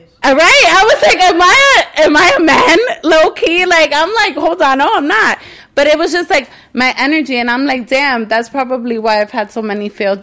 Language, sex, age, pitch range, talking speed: English, female, 20-39, 205-270 Hz, 225 wpm